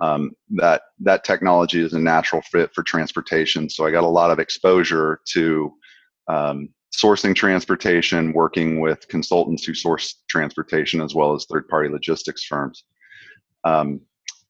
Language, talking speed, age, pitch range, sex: English, 140 wpm, 30-49, 75-85 Hz, male